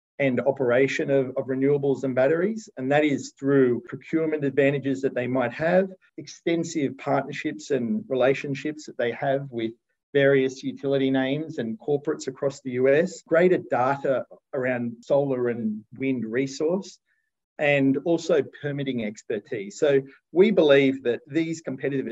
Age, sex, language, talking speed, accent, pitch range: 40-59, male, English, 135 wpm, Australian, 125-155 Hz